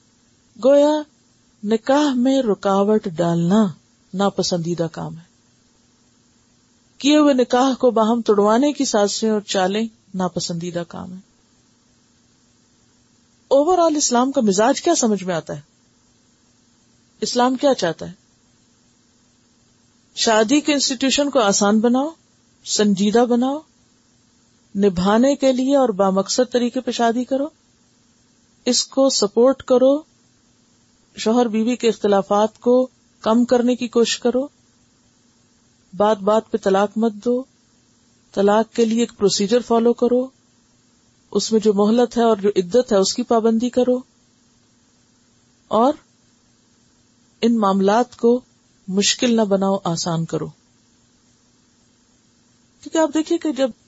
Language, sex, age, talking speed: Urdu, female, 50-69, 120 wpm